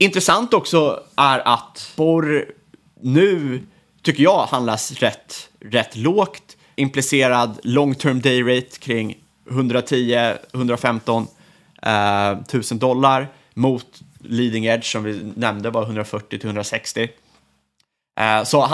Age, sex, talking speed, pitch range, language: 30-49, male, 100 wpm, 105-130 Hz, Swedish